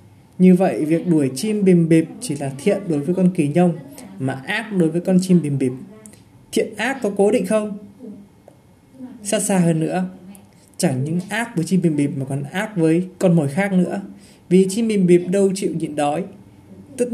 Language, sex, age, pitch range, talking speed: Vietnamese, male, 20-39, 150-195 Hz, 200 wpm